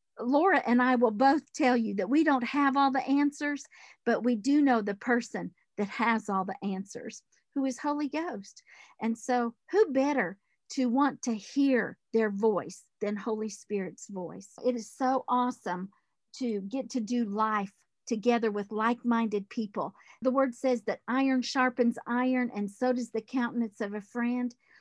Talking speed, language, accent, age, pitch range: 170 wpm, English, American, 50-69, 225-280 Hz